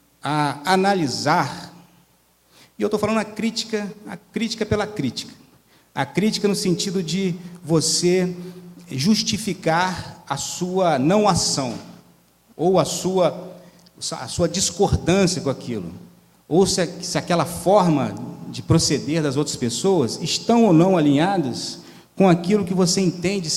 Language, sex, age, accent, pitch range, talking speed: Portuguese, male, 40-59, Brazilian, 140-190 Hz, 125 wpm